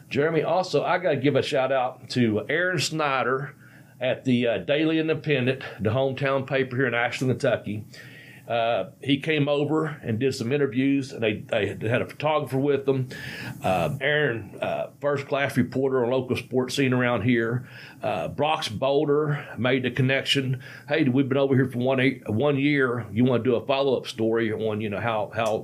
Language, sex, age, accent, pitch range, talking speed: English, male, 40-59, American, 120-145 Hz, 185 wpm